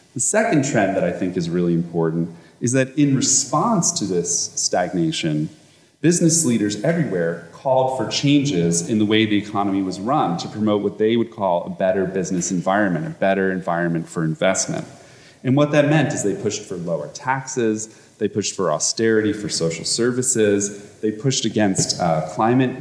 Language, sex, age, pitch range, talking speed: English, male, 30-49, 95-130 Hz, 175 wpm